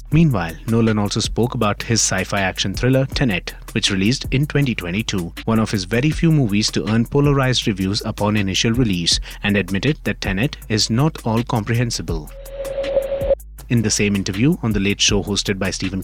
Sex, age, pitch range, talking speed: male, 30-49, 100-130 Hz, 170 wpm